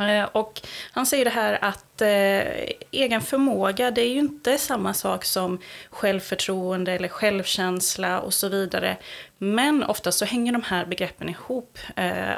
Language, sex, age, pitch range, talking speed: Swedish, female, 30-49, 185-230 Hz, 150 wpm